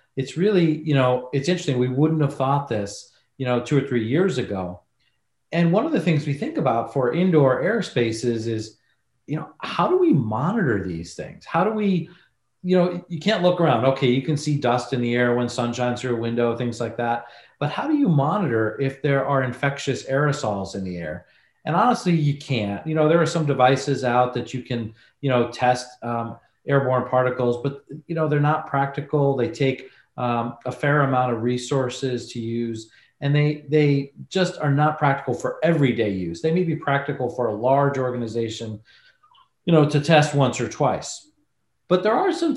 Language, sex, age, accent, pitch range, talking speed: English, male, 40-59, American, 120-155 Hz, 200 wpm